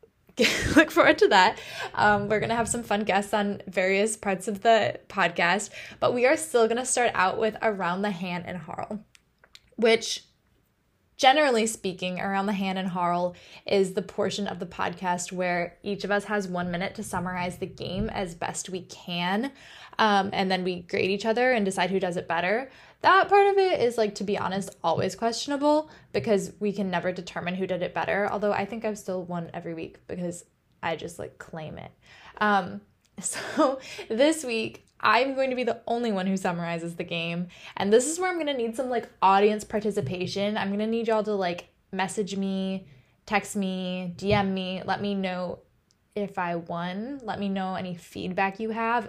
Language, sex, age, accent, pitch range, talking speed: English, female, 10-29, American, 180-220 Hz, 195 wpm